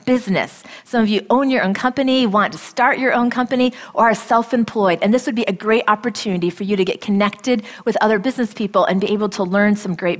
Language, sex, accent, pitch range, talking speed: English, female, American, 190-240 Hz, 235 wpm